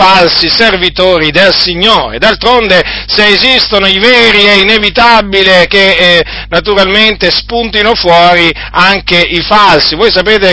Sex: male